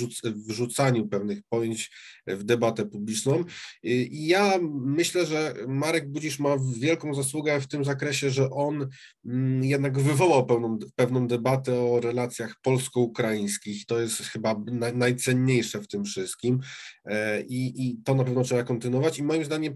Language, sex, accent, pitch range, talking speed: Polish, male, native, 115-145 Hz, 135 wpm